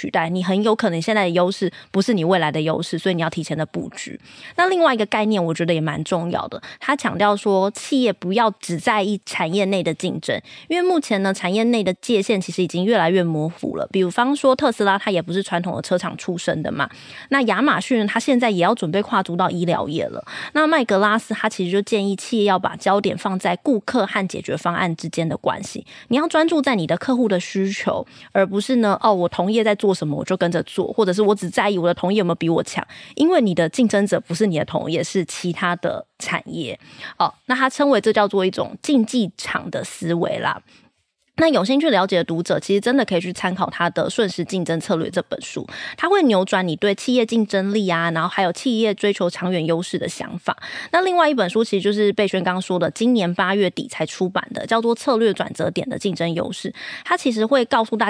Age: 20-39